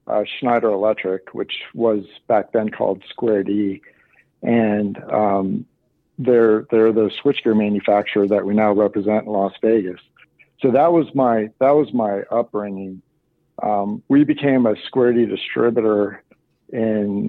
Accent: American